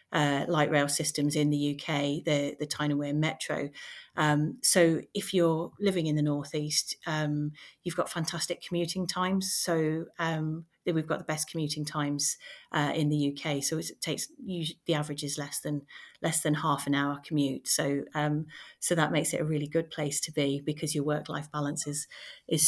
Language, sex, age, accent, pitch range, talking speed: English, female, 30-49, British, 150-165 Hz, 190 wpm